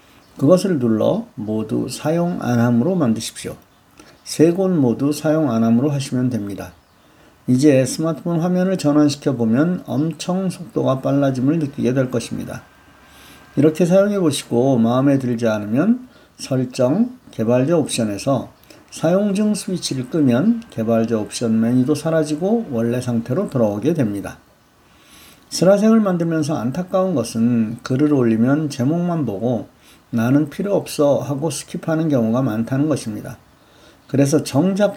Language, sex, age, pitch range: Korean, male, 50-69, 115-160 Hz